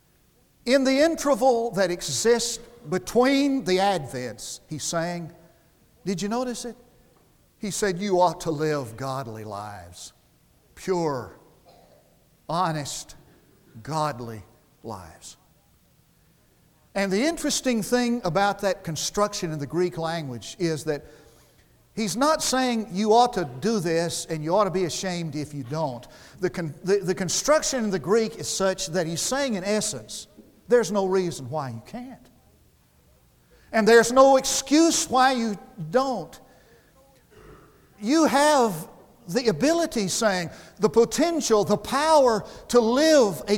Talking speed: 130 wpm